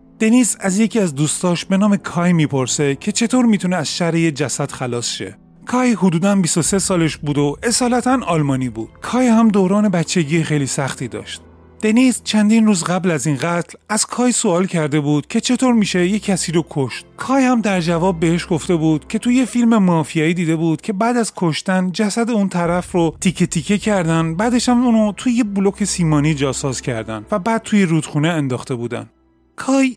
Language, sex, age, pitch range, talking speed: Persian, male, 30-49, 155-215 Hz, 185 wpm